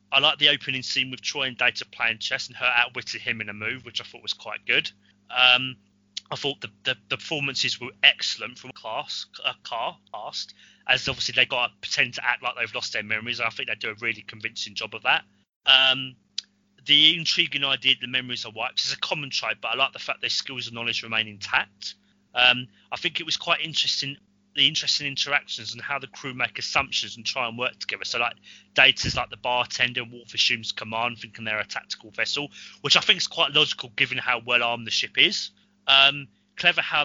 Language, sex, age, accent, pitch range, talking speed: English, male, 30-49, British, 110-140 Hz, 220 wpm